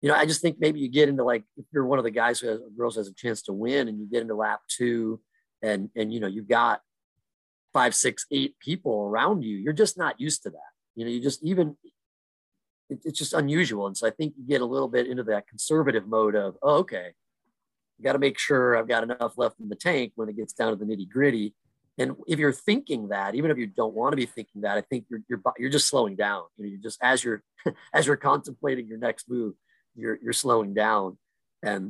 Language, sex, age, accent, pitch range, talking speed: English, male, 30-49, American, 105-135 Hz, 250 wpm